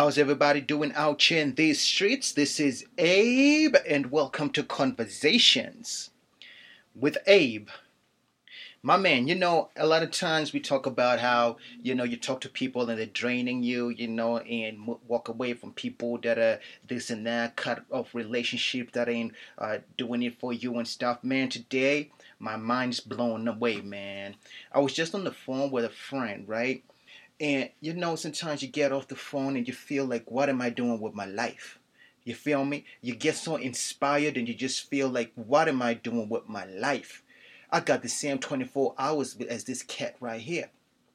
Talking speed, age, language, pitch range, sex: 190 wpm, 30-49, English, 120-145 Hz, male